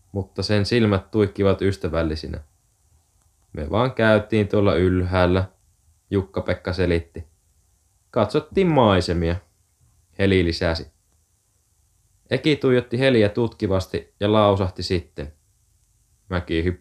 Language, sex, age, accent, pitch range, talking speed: Finnish, male, 20-39, native, 90-110 Hz, 90 wpm